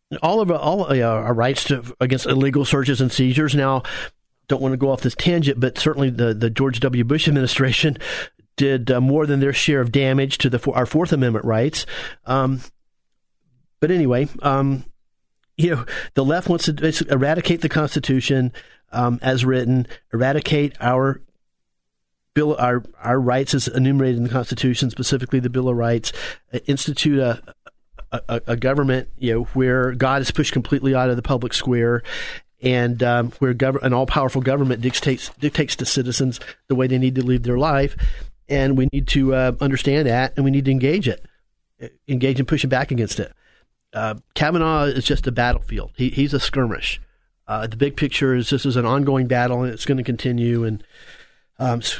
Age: 40-59